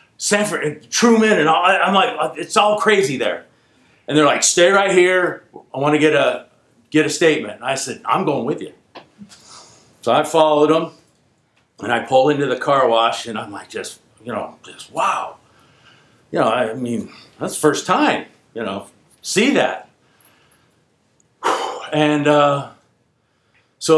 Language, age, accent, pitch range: English, 50-69, American, 120-170 Hz